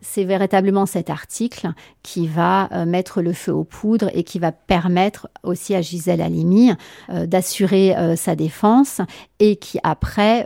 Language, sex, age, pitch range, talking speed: French, female, 40-59, 180-210 Hz, 145 wpm